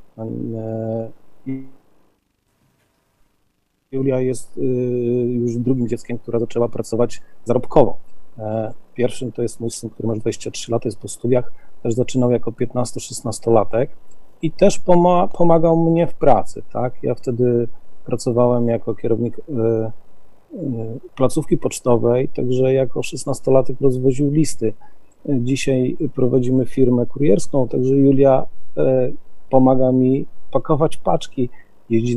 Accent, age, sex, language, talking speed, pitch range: native, 40-59, male, Polish, 105 wpm, 120-140 Hz